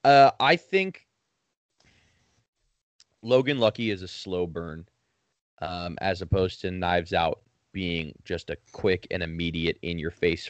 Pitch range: 90-110 Hz